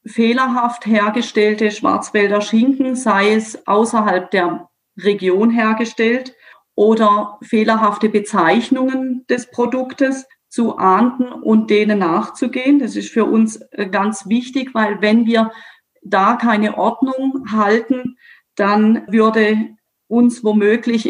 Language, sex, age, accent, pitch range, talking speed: German, female, 40-59, German, 210-235 Hz, 105 wpm